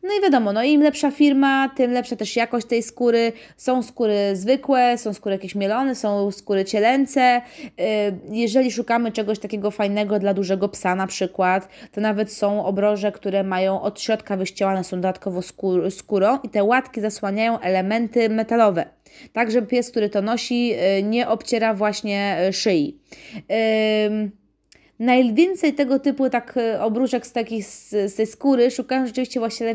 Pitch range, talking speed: 200-245 Hz, 150 wpm